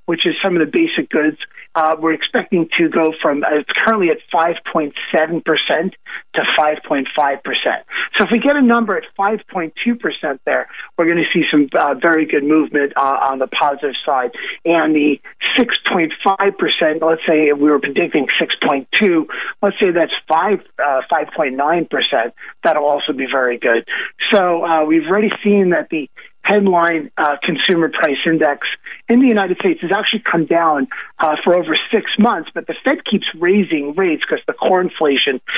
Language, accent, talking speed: English, American, 165 wpm